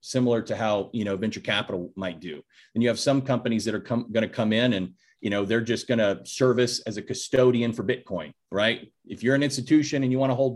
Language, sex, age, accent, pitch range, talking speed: English, male, 30-49, American, 110-135 Hz, 250 wpm